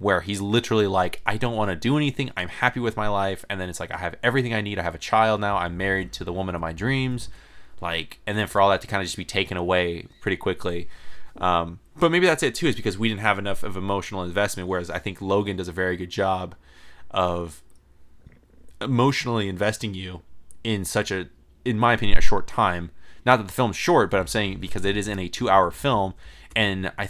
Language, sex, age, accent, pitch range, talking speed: English, male, 20-39, American, 90-110 Hz, 235 wpm